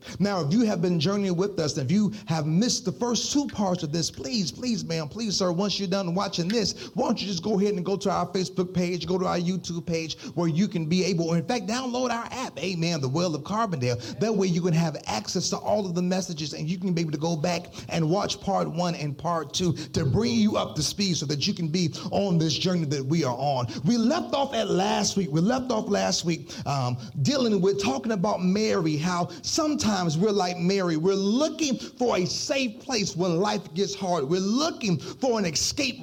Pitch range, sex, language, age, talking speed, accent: 175-230 Hz, male, English, 40-59, 235 wpm, American